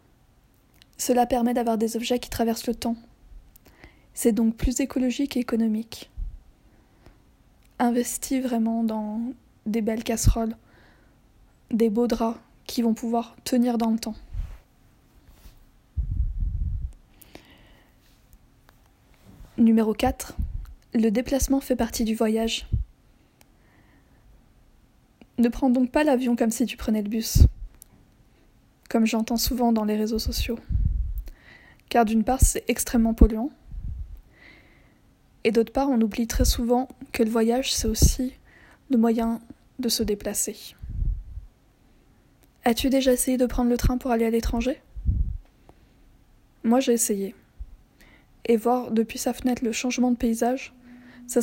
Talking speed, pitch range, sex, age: 120 wpm, 225-250 Hz, female, 20-39